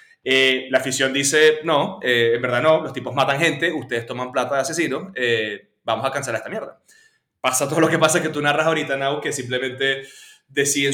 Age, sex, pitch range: 20-39, male, 125-155 Hz